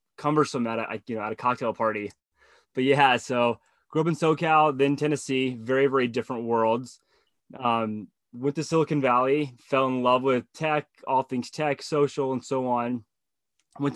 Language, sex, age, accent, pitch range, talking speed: English, male, 20-39, American, 120-145 Hz, 160 wpm